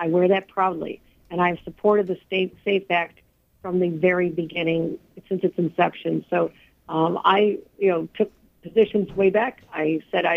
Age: 50-69